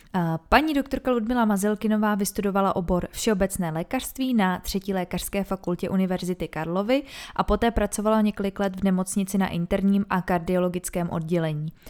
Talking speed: 130 wpm